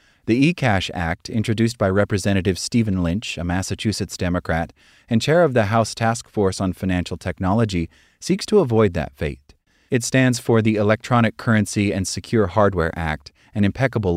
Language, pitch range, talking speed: English, 90-115 Hz, 160 wpm